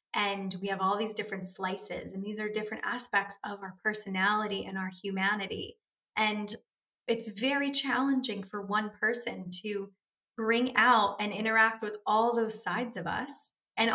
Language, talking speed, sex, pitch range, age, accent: English, 160 wpm, female, 190-230 Hz, 20-39, American